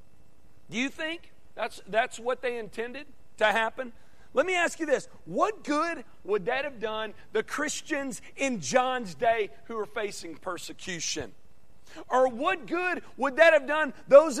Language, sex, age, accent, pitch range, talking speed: English, male, 40-59, American, 205-290 Hz, 160 wpm